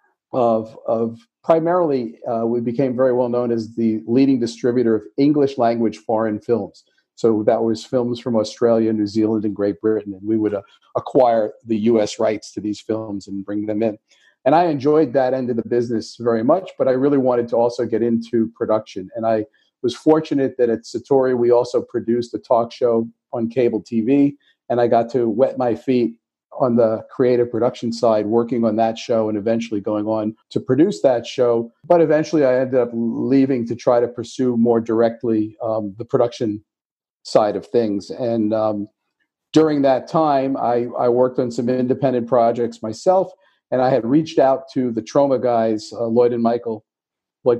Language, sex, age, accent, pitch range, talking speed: English, male, 50-69, American, 110-125 Hz, 185 wpm